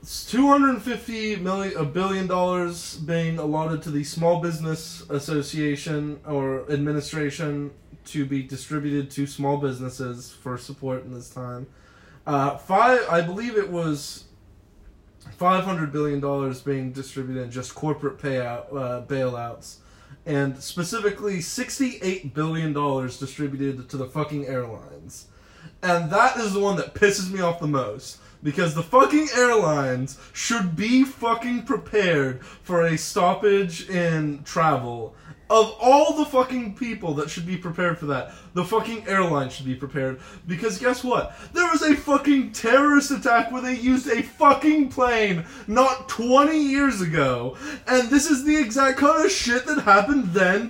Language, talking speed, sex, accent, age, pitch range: English, 140 wpm, male, American, 20-39, 145-240 Hz